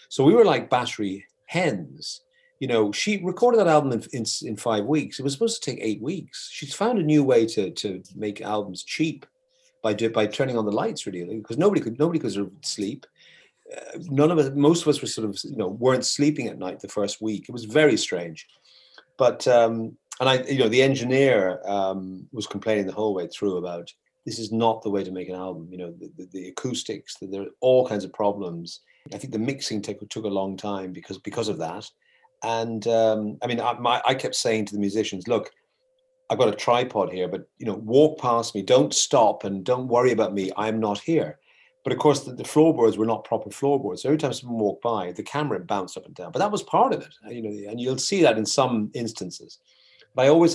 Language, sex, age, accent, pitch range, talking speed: English, male, 40-59, British, 105-150 Hz, 230 wpm